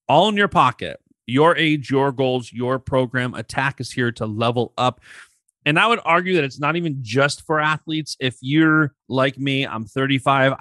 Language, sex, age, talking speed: English, male, 30-49, 185 wpm